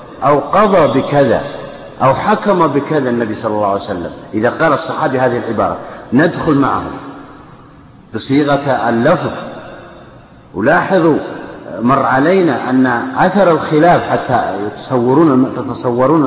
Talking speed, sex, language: 105 wpm, male, Arabic